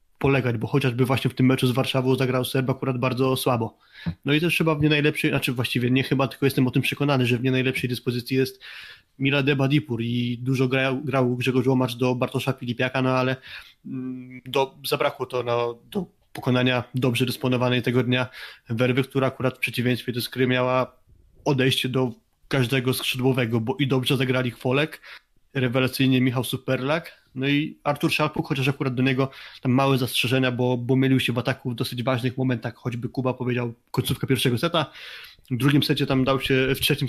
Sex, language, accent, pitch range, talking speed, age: male, Polish, native, 125-135 Hz, 185 wpm, 20-39